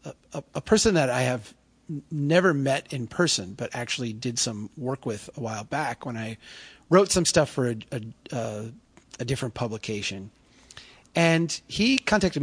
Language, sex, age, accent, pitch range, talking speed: English, male, 40-59, American, 115-160 Hz, 155 wpm